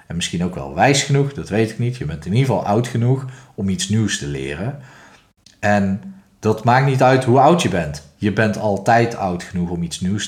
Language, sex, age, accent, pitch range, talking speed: Dutch, male, 40-59, Dutch, 95-125 Hz, 230 wpm